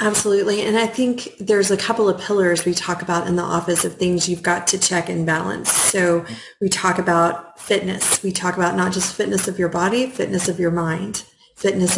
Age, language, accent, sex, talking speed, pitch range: 30-49, English, American, female, 210 wpm, 170-195 Hz